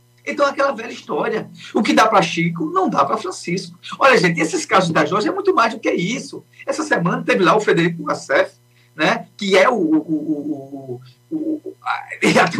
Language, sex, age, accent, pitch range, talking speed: Portuguese, male, 40-59, Brazilian, 180-275 Hz, 180 wpm